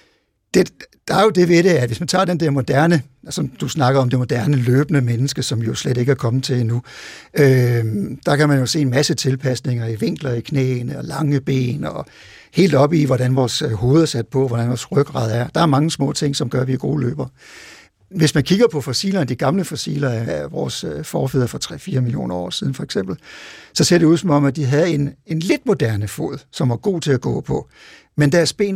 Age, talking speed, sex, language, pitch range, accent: 60-79, 240 wpm, male, Danish, 130-170 Hz, native